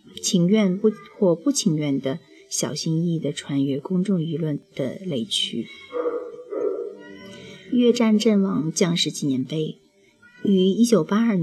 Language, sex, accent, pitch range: Chinese, female, native, 155-215 Hz